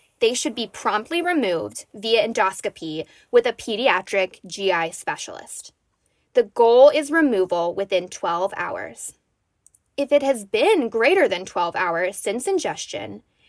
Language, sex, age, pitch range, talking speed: English, female, 10-29, 195-310 Hz, 130 wpm